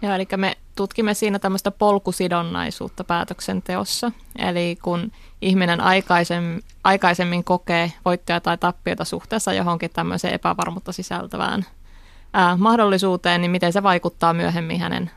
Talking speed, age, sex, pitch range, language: 120 wpm, 20-39, female, 175-195 Hz, Finnish